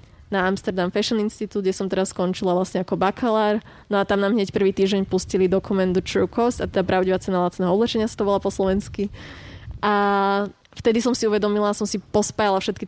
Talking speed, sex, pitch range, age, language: 195 wpm, female, 190-210 Hz, 20-39, Slovak